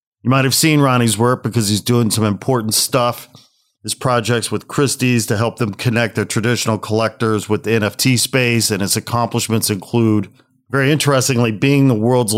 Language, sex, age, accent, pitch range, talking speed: English, male, 40-59, American, 105-125 Hz, 175 wpm